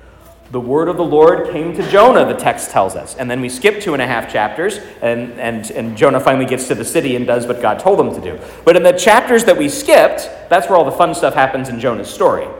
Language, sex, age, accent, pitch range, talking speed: English, male, 40-59, American, 125-185 Hz, 255 wpm